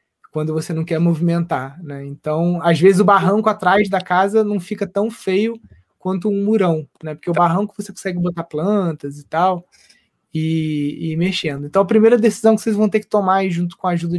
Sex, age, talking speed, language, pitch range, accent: male, 20-39, 205 wpm, Portuguese, 165-205 Hz, Brazilian